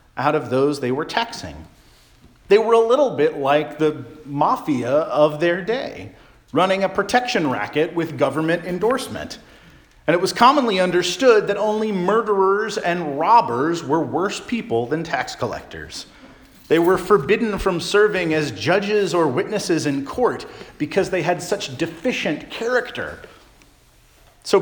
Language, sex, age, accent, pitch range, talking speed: English, male, 40-59, American, 140-200 Hz, 140 wpm